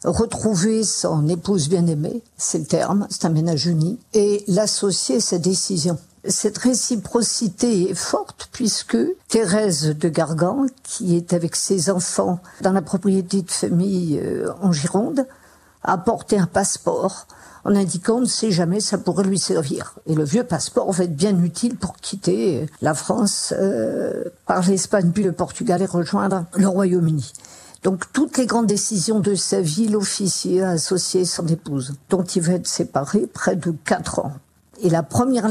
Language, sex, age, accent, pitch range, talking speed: French, female, 50-69, French, 180-220 Hz, 160 wpm